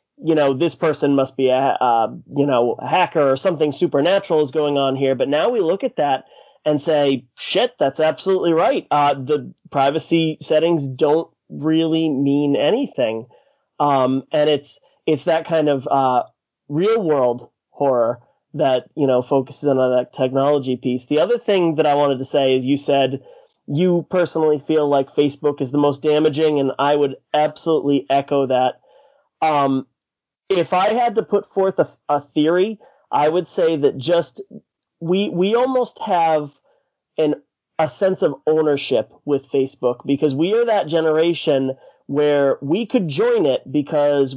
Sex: male